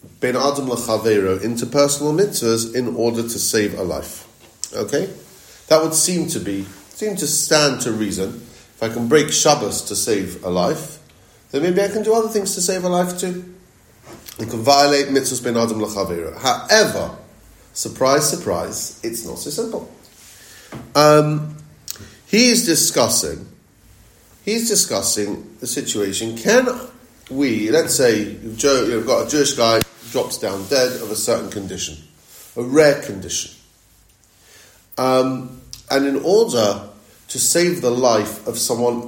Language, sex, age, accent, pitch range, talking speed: English, male, 40-59, British, 105-150 Hz, 145 wpm